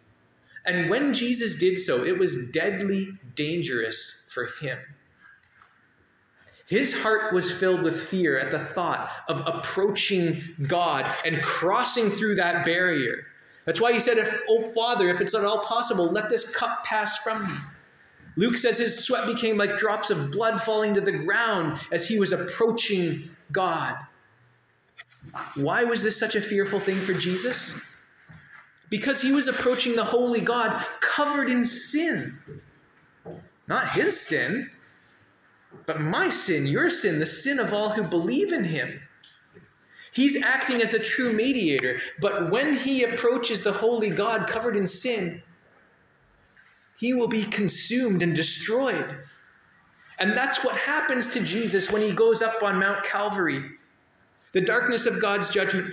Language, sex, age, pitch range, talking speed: English, male, 20-39, 185-235 Hz, 150 wpm